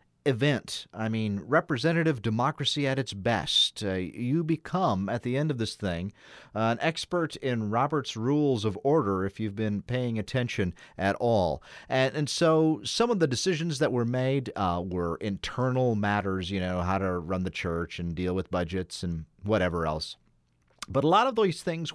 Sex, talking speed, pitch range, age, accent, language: male, 180 wpm, 95-140 Hz, 40-59, American, English